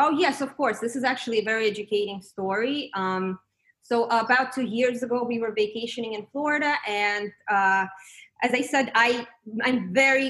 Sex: female